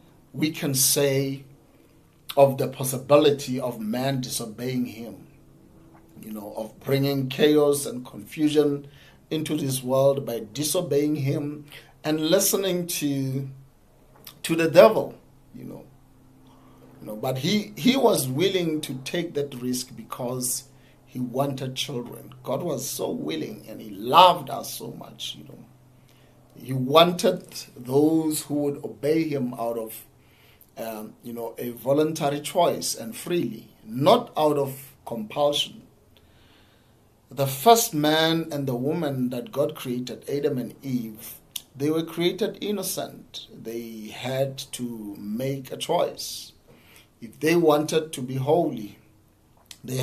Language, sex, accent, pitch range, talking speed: English, male, South African, 120-150 Hz, 130 wpm